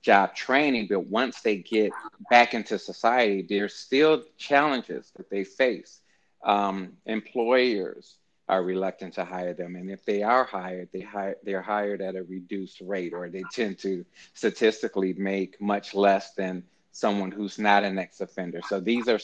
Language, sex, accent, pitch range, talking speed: English, male, American, 95-110 Hz, 155 wpm